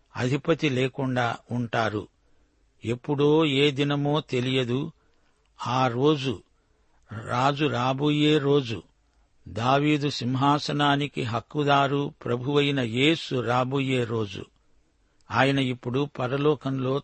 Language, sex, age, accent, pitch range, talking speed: Telugu, male, 60-79, native, 125-145 Hz, 80 wpm